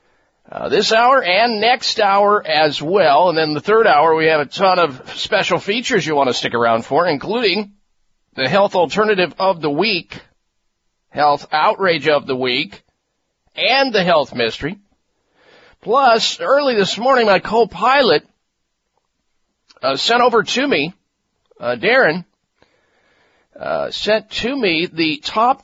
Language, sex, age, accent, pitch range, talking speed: English, male, 50-69, American, 160-220 Hz, 145 wpm